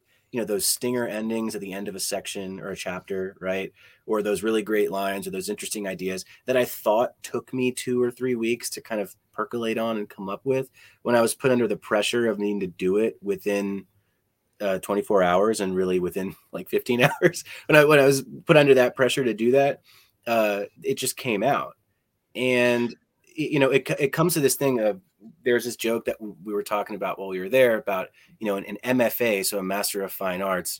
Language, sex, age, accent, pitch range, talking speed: English, male, 30-49, American, 95-120 Hz, 225 wpm